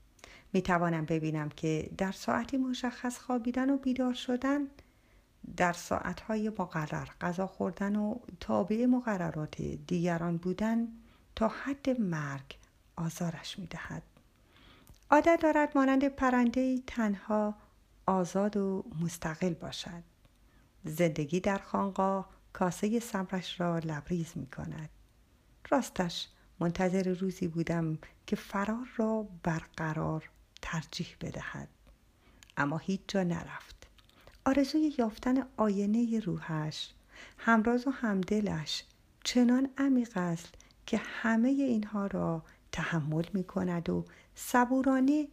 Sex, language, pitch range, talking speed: female, Persian, 165-230 Hz, 100 wpm